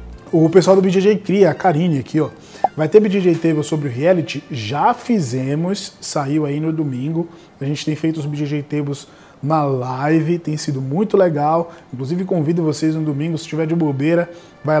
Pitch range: 150-190 Hz